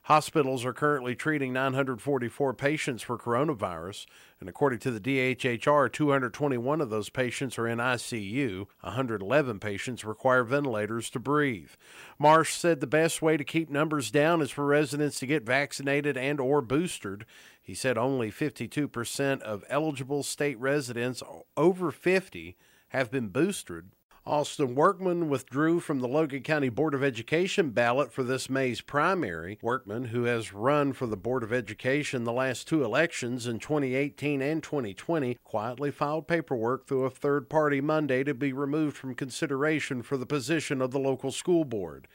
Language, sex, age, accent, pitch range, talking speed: English, male, 50-69, American, 120-150 Hz, 155 wpm